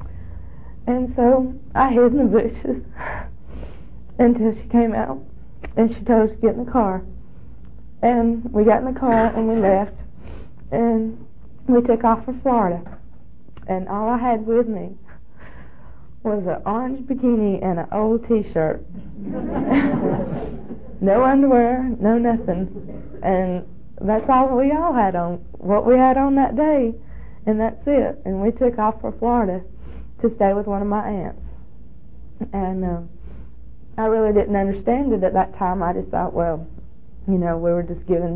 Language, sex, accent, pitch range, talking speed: English, female, American, 180-235 Hz, 160 wpm